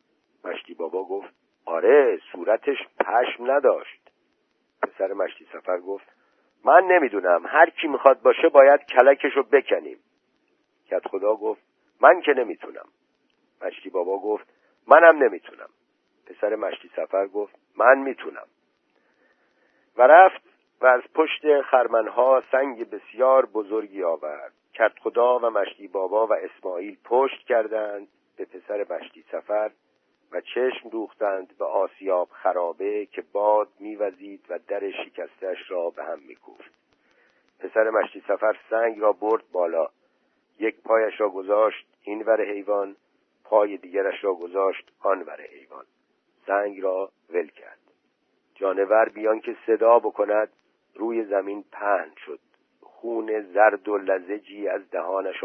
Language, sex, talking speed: Persian, male, 125 wpm